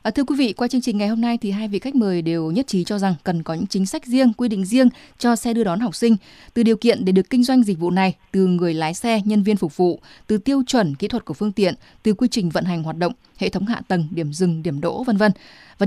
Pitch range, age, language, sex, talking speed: 180-235 Hz, 20-39, Vietnamese, female, 295 wpm